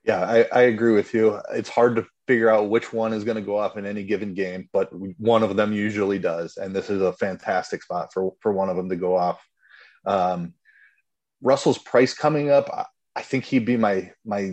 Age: 30-49